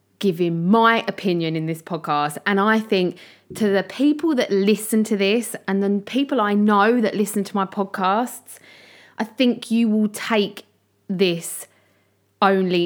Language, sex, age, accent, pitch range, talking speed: English, female, 20-39, British, 175-230 Hz, 155 wpm